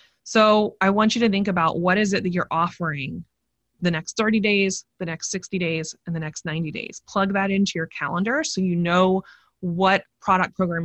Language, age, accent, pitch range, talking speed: English, 20-39, American, 165-215 Hz, 205 wpm